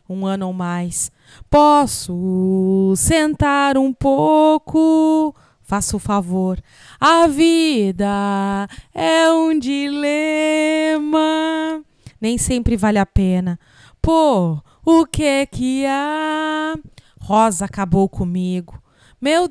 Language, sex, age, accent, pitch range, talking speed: Portuguese, female, 20-39, Brazilian, 200-310 Hz, 90 wpm